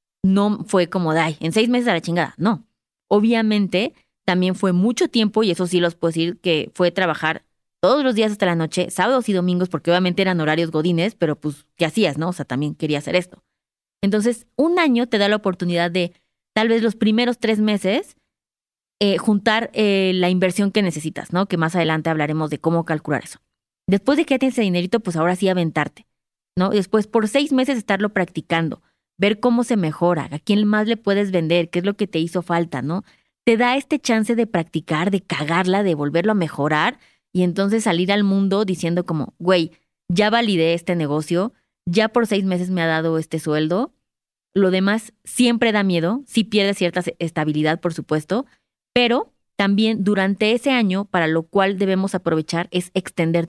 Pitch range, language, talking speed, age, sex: 165-215 Hz, Spanish, 195 wpm, 20-39, female